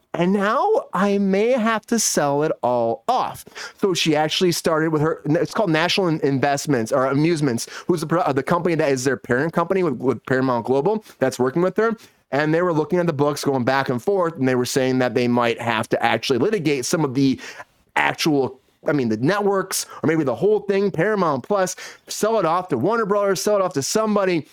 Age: 30-49